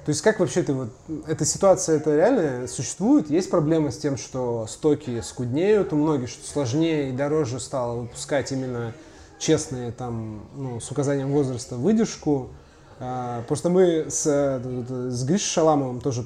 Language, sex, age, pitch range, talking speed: Russian, male, 20-39, 125-155 Hz, 155 wpm